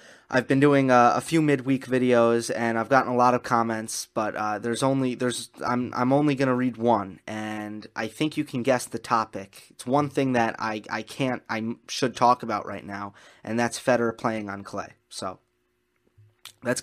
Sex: male